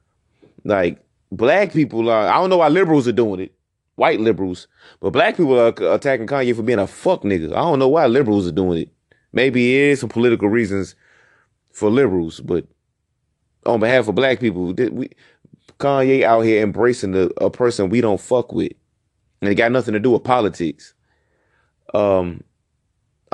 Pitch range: 100-130 Hz